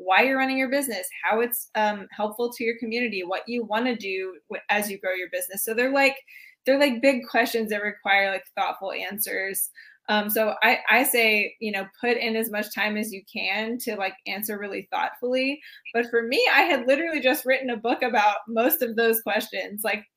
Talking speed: 210 wpm